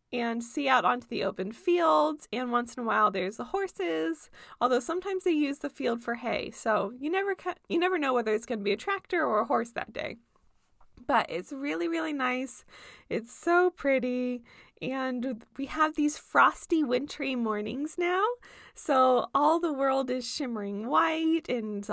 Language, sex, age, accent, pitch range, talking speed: English, female, 20-39, American, 235-335 Hz, 180 wpm